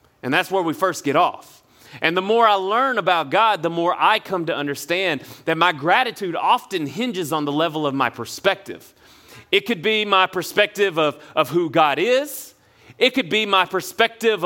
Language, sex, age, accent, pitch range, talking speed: English, male, 30-49, American, 165-220 Hz, 190 wpm